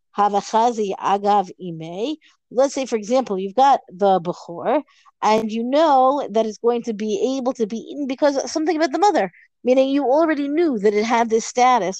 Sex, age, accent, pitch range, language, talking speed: female, 50-69, American, 195-250 Hz, English, 165 wpm